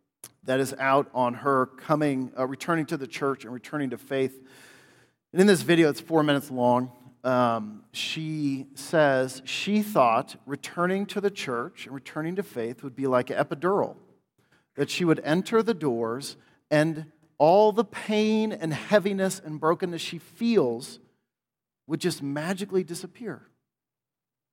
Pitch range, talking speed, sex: 135-200 Hz, 150 wpm, male